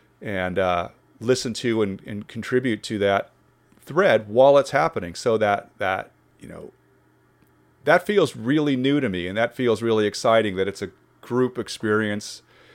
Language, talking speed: English, 160 wpm